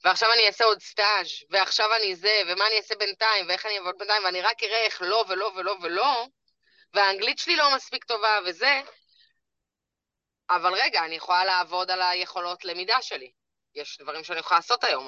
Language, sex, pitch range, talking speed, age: Hebrew, female, 180-255 Hz, 180 wpm, 20-39